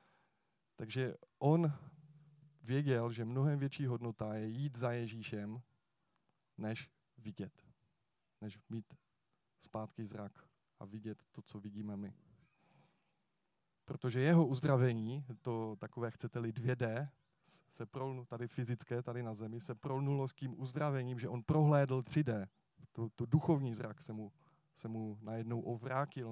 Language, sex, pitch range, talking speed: Czech, male, 110-145 Hz, 130 wpm